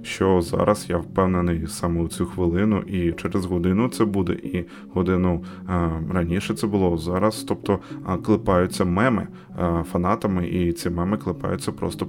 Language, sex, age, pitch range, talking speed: Ukrainian, male, 20-39, 90-110 Hz, 145 wpm